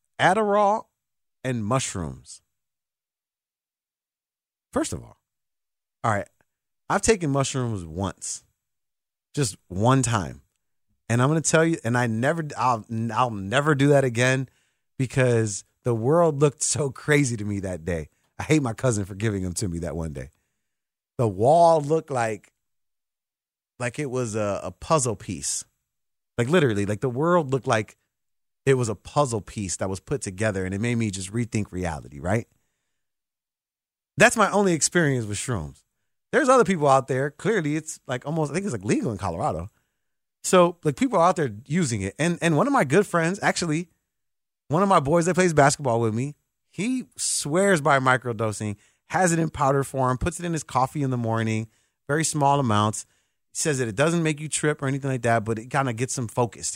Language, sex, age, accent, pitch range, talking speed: English, male, 30-49, American, 110-155 Hz, 180 wpm